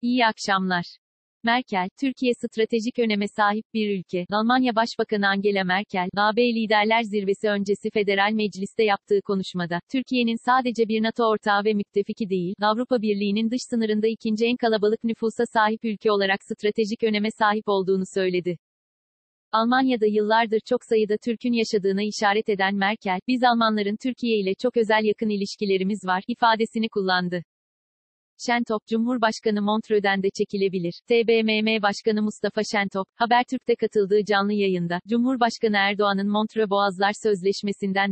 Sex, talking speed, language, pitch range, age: female, 130 wpm, Turkish, 200-225 Hz, 40-59